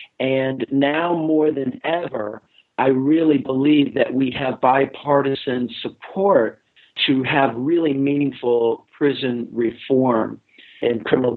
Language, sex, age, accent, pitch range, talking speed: English, male, 50-69, American, 125-145 Hz, 110 wpm